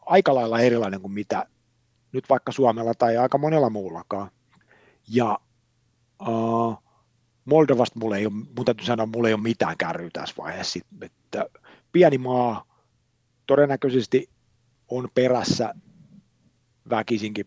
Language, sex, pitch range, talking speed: Finnish, male, 115-140 Hz, 105 wpm